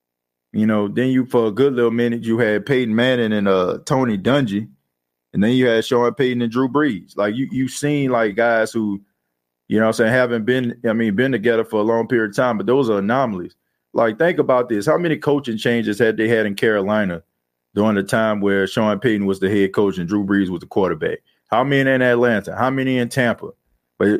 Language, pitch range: English, 100-125 Hz